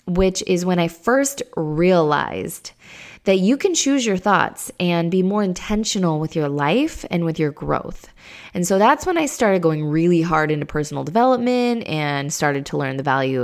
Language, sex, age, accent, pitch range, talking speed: English, female, 20-39, American, 160-225 Hz, 185 wpm